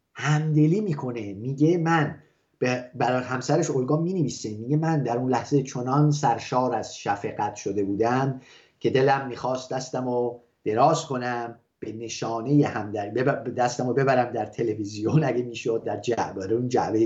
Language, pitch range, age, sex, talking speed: English, 120-150 Hz, 30-49, male, 145 wpm